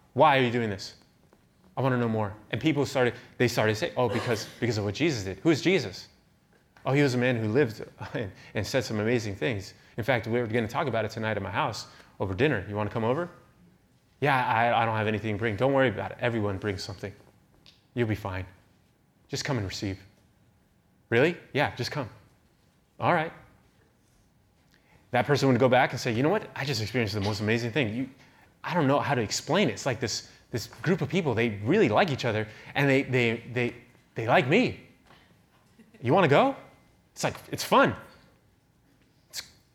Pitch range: 105-135 Hz